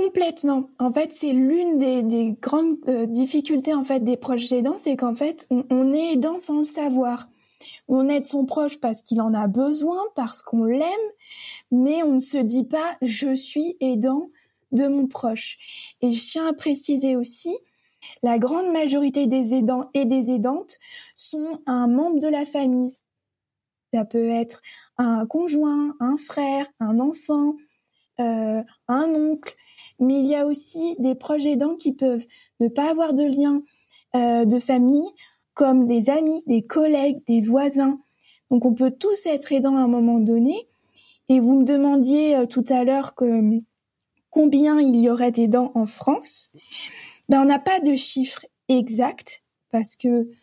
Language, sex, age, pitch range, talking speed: French, female, 20-39, 245-300 Hz, 170 wpm